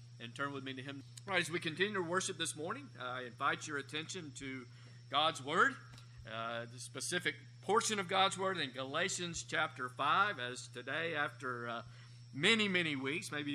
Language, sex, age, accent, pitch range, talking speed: English, male, 50-69, American, 125-165 Hz, 175 wpm